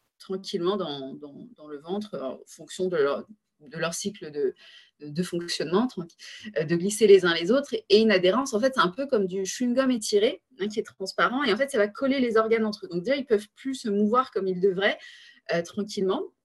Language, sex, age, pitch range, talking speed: French, female, 20-39, 185-240 Hz, 225 wpm